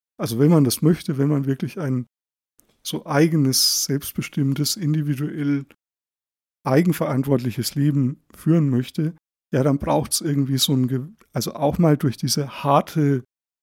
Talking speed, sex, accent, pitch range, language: 135 wpm, male, German, 130-160 Hz, German